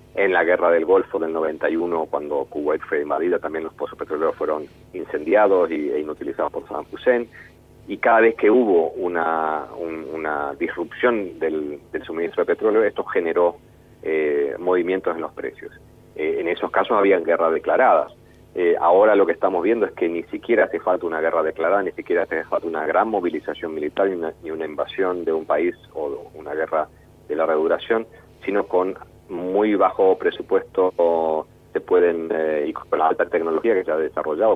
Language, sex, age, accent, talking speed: Spanish, male, 40-59, Argentinian, 180 wpm